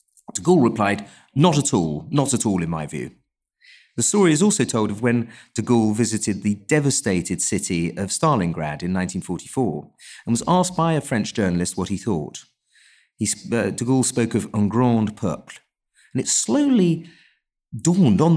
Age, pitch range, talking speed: 40-59, 105-145 Hz, 175 wpm